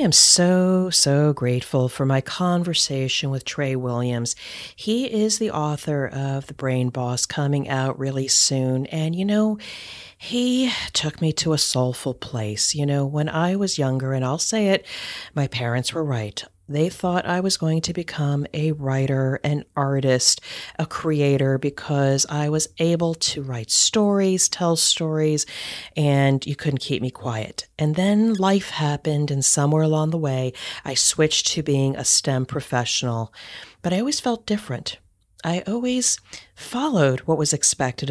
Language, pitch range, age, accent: English, 130-165 Hz, 40-59, American